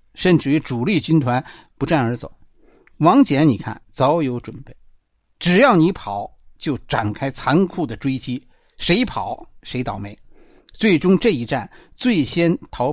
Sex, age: male, 50-69